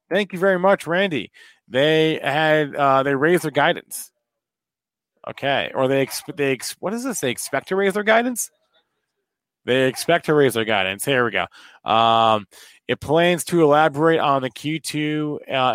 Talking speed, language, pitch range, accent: 170 wpm, English, 115-150 Hz, American